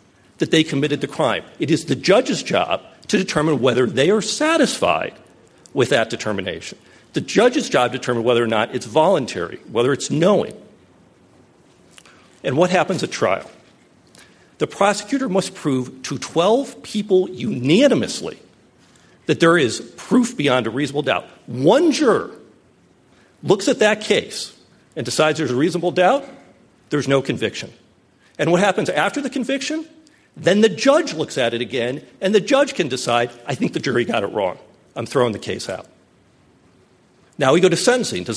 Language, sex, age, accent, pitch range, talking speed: English, male, 50-69, American, 145-235 Hz, 165 wpm